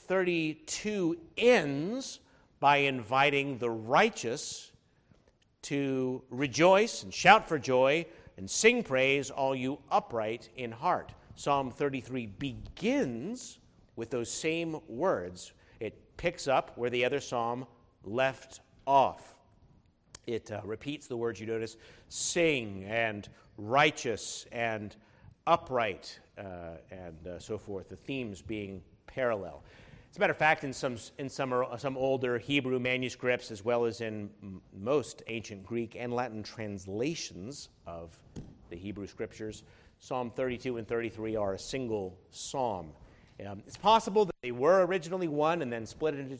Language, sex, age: English, male, 50-69